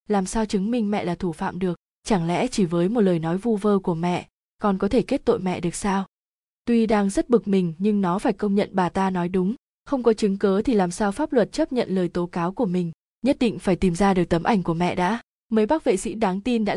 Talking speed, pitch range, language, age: 270 wpm, 185-225 Hz, Vietnamese, 20-39